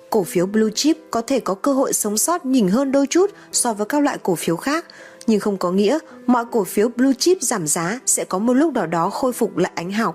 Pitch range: 185-250 Hz